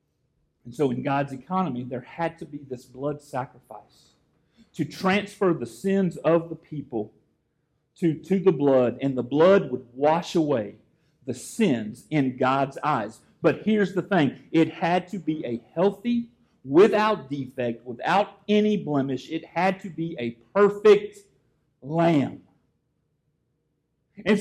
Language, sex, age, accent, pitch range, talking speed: English, male, 40-59, American, 150-205 Hz, 140 wpm